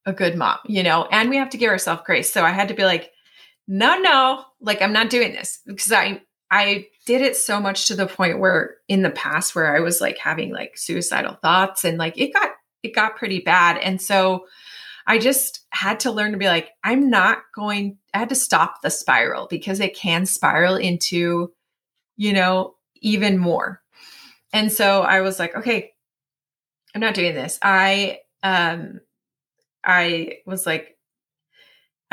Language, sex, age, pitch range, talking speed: English, female, 30-49, 175-225 Hz, 185 wpm